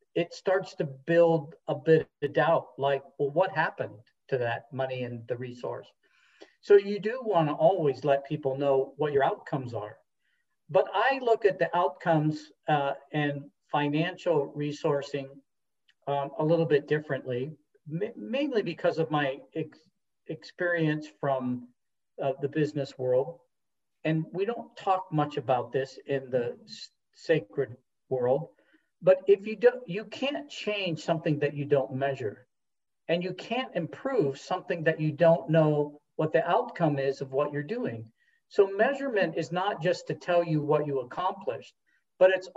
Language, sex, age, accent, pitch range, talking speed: English, male, 50-69, American, 140-190 Hz, 150 wpm